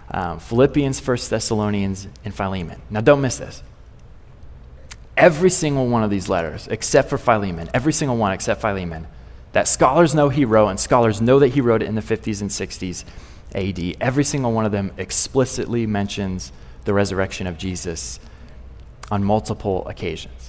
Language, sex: English, male